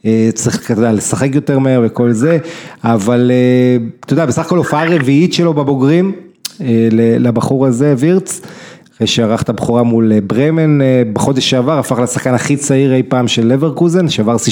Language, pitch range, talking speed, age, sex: Hebrew, 115-150 Hz, 155 wpm, 30-49, male